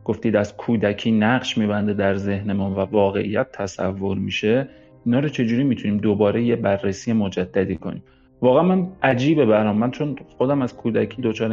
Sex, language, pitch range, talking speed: male, Persian, 110-150 Hz, 160 wpm